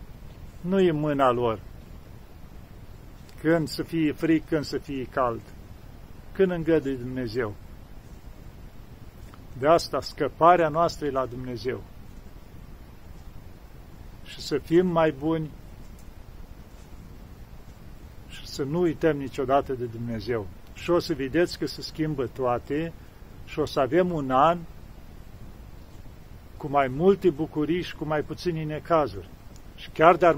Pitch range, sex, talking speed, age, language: 110-160 Hz, male, 120 wpm, 50-69, Romanian